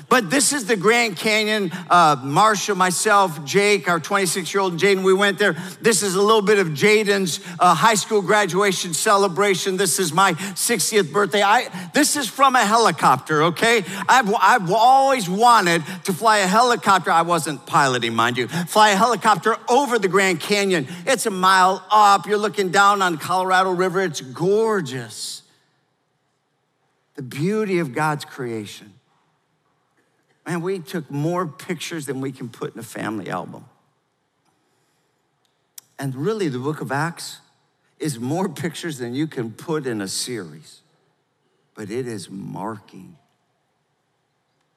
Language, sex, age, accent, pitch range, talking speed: English, male, 50-69, American, 145-205 Hz, 145 wpm